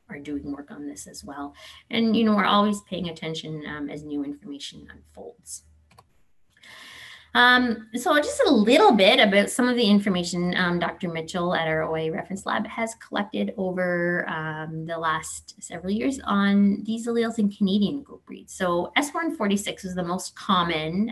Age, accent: 20-39, American